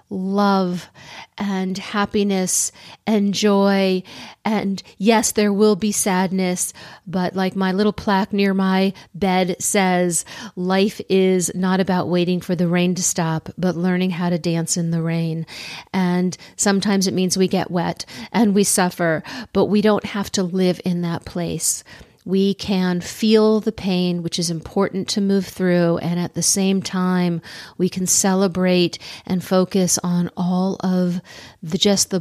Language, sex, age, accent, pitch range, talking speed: English, female, 50-69, American, 180-205 Hz, 155 wpm